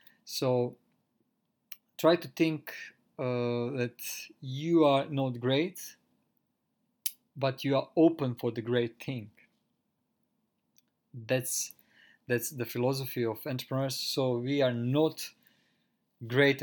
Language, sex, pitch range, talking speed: English, male, 120-140 Hz, 105 wpm